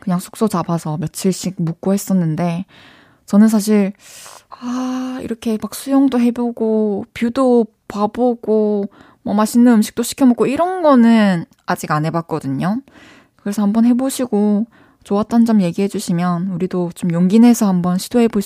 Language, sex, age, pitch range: Korean, female, 20-39, 195-255 Hz